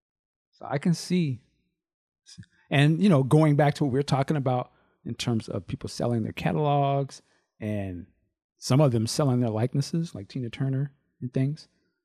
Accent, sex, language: American, male, English